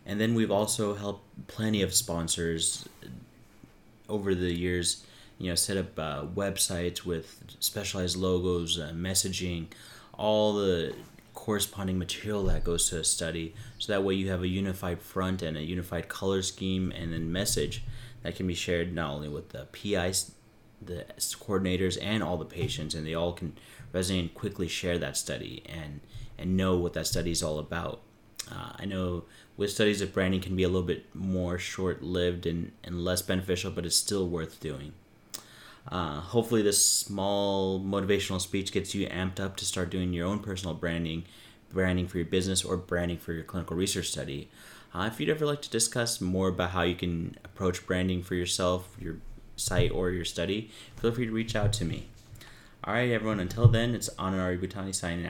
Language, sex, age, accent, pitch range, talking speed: English, male, 30-49, American, 85-105 Hz, 185 wpm